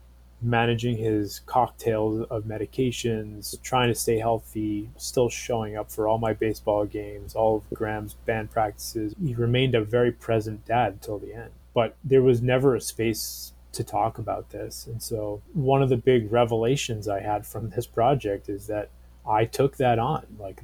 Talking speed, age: 175 wpm, 20-39